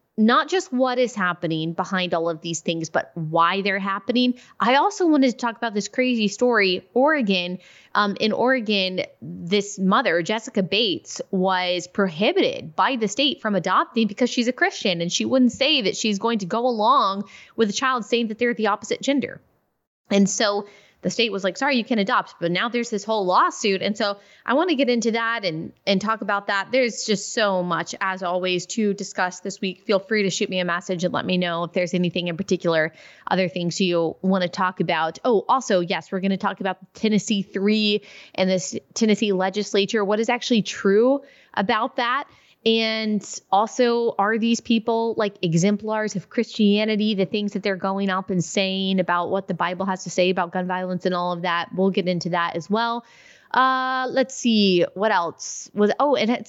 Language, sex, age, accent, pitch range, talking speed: English, female, 20-39, American, 185-230 Hz, 200 wpm